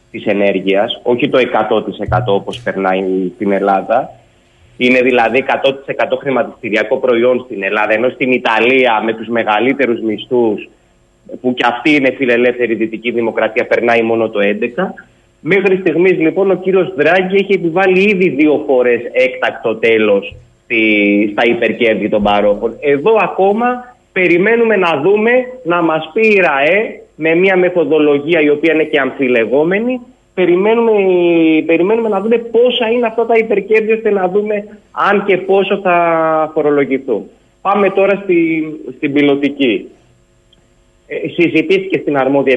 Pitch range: 115-190 Hz